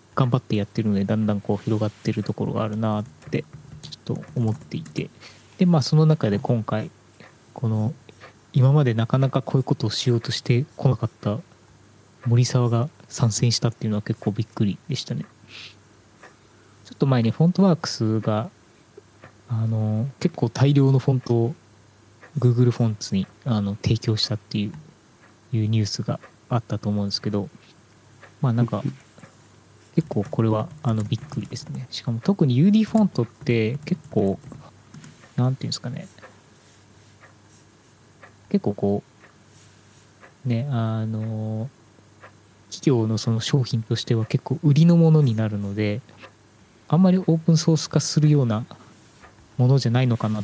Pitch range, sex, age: 105-135 Hz, male, 20-39